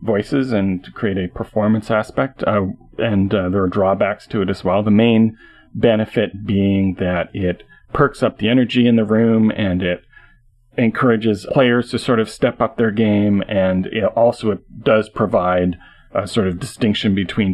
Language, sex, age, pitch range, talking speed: English, male, 40-59, 95-110 Hz, 180 wpm